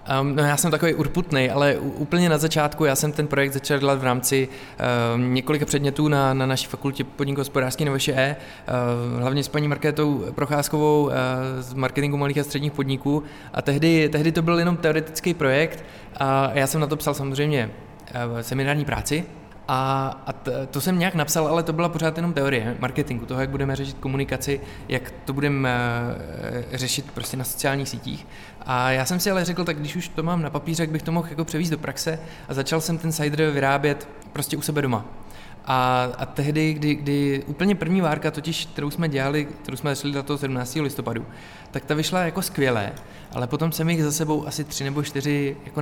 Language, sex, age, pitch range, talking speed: Czech, male, 20-39, 130-150 Hz, 190 wpm